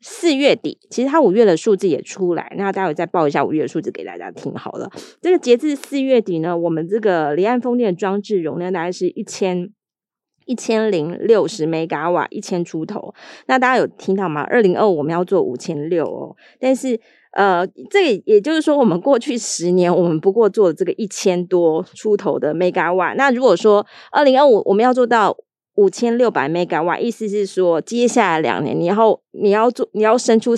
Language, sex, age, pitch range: Chinese, female, 20-39, 180-250 Hz